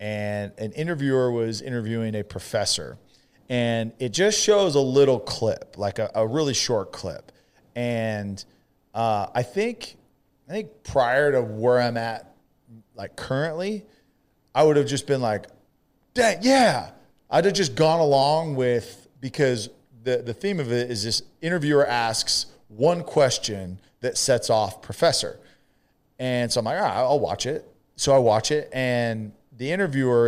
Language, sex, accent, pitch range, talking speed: English, male, American, 115-150 Hz, 155 wpm